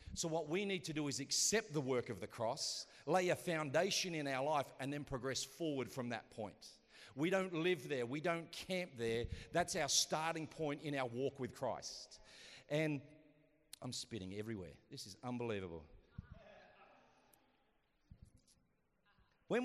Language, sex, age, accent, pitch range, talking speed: English, male, 40-59, Australian, 130-170 Hz, 155 wpm